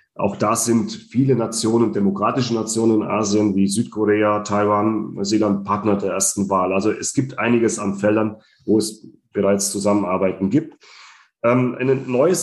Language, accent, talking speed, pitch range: German, German, 150 wpm, 105-125 Hz